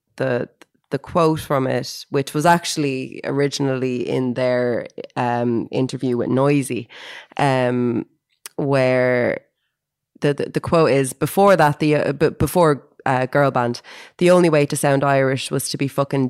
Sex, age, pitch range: female, 20-39, 125-150 Hz